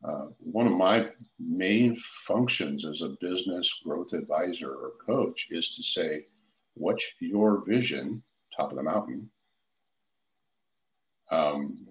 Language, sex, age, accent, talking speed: English, male, 60-79, American, 120 wpm